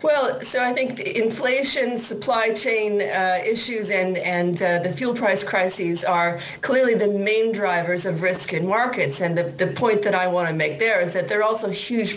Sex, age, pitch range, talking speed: female, 40-59, 165-200 Hz, 205 wpm